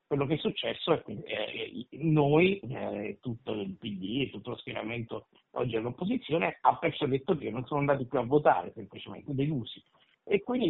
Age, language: 50-69, Italian